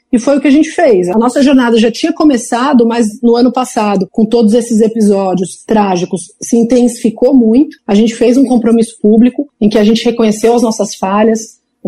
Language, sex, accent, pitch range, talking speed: Portuguese, female, Brazilian, 205-245 Hz, 200 wpm